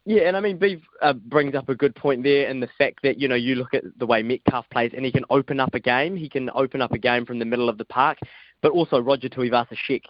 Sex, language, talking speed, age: male, English, 285 wpm, 20-39